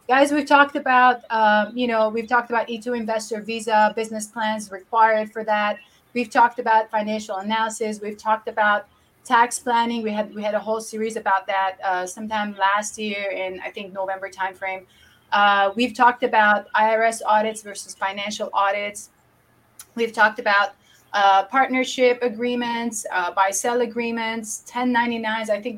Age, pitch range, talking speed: 30-49, 210-245 Hz, 160 wpm